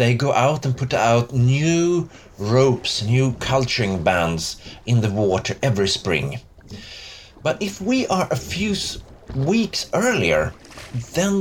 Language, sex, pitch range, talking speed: English, male, 115-160 Hz, 130 wpm